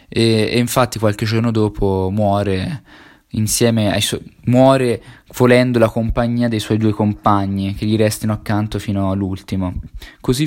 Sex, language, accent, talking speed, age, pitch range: male, Italian, native, 140 wpm, 20-39, 100-120 Hz